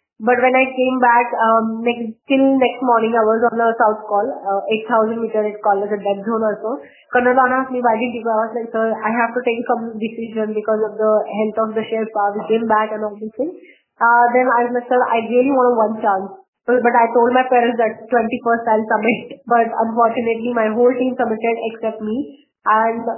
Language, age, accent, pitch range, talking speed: Marathi, 20-39, native, 220-245 Hz, 225 wpm